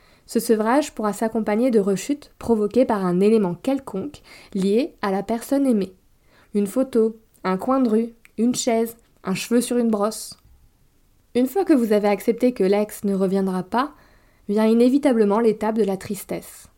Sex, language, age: female, French, 20-39